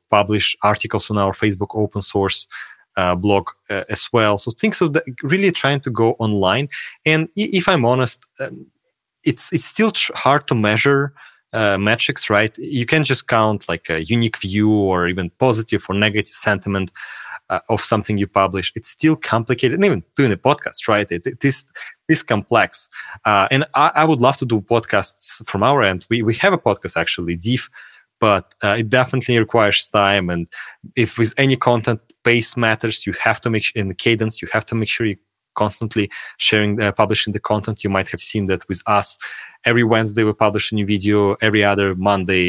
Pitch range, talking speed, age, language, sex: 100-120 Hz, 200 wpm, 20-39, English, male